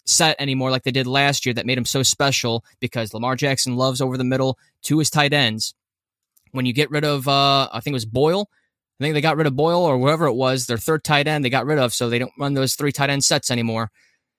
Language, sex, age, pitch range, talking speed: English, male, 20-39, 120-150 Hz, 265 wpm